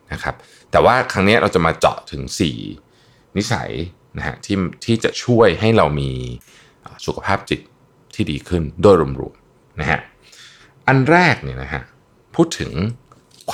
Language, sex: Thai, male